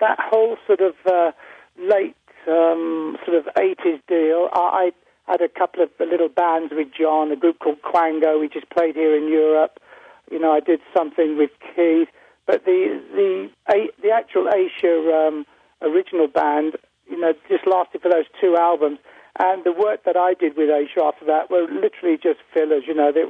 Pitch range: 150-185 Hz